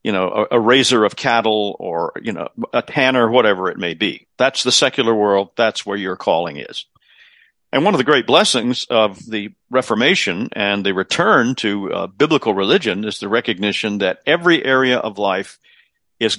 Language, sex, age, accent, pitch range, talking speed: English, male, 50-69, American, 105-125 Hz, 185 wpm